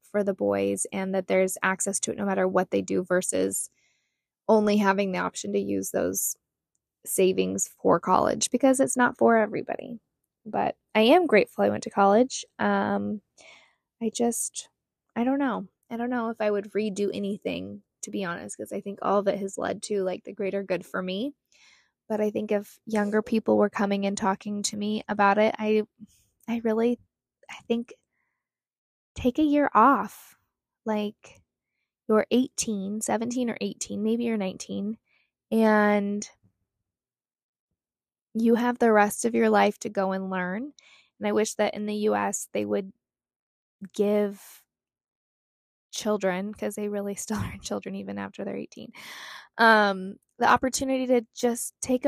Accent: American